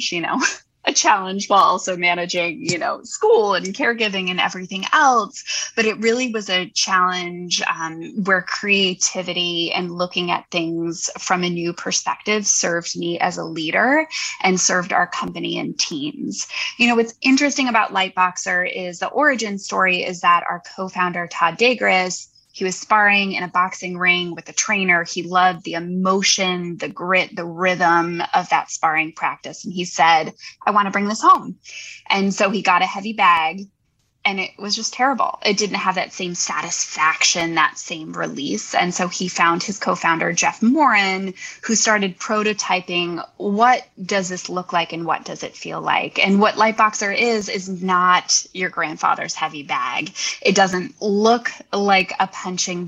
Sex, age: female, 20-39